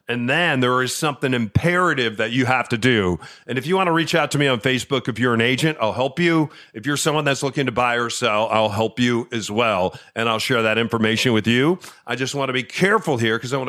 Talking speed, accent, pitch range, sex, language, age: 265 wpm, American, 115-150 Hz, male, English, 40-59